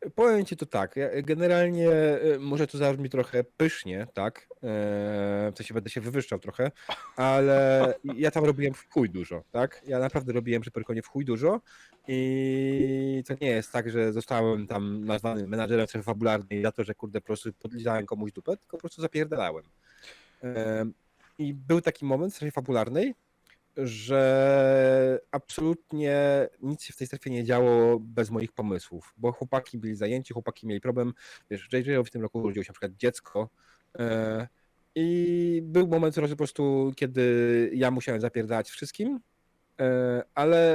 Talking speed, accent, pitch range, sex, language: 160 wpm, native, 115-150 Hz, male, Polish